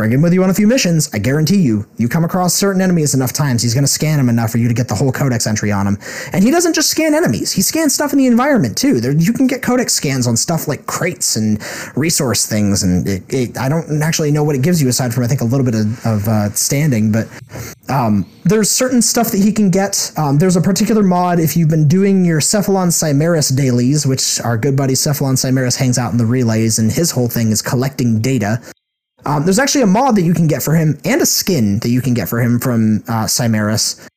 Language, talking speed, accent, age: English, 250 wpm, American, 30-49